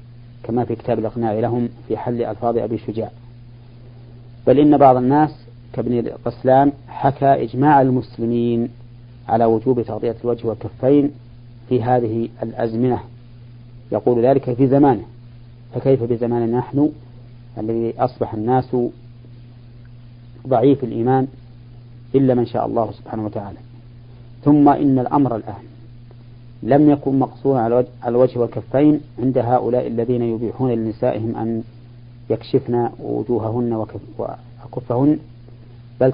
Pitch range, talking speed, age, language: 120-125 Hz, 110 wpm, 40-59, Arabic